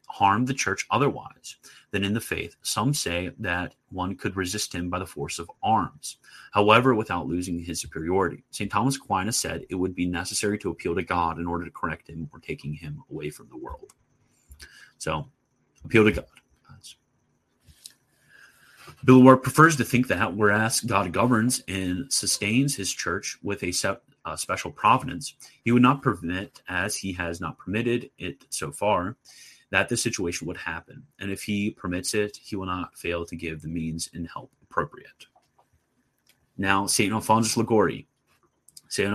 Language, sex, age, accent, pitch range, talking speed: English, male, 30-49, American, 90-115 Hz, 170 wpm